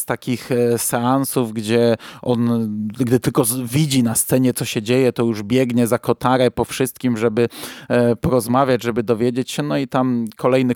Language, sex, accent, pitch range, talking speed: Polish, male, native, 120-140 Hz, 160 wpm